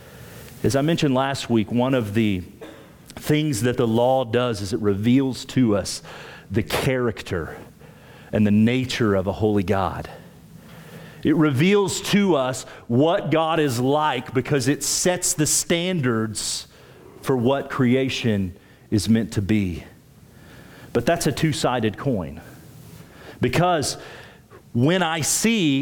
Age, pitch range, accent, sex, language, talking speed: 40-59, 110-150 Hz, American, male, English, 130 wpm